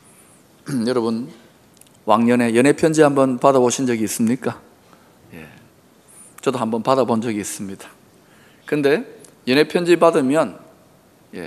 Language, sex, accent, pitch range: Korean, male, native, 120-170 Hz